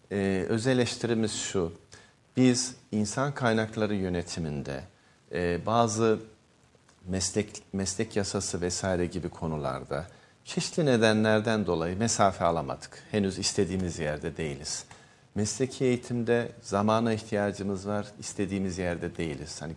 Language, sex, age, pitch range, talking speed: Turkish, male, 50-69, 90-115 Hz, 105 wpm